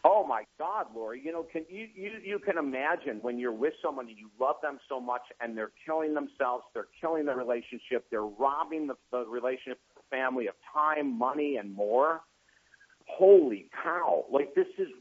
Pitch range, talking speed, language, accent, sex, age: 125-175 Hz, 190 wpm, English, American, male, 50-69